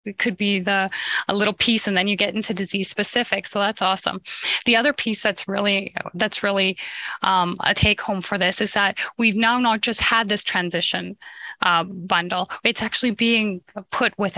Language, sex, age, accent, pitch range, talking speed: English, female, 10-29, American, 195-225 Hz, 190 wpm